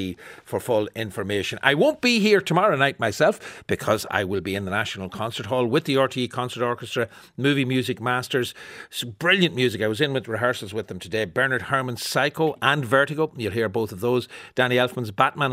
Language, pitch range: English, 100-145 Hz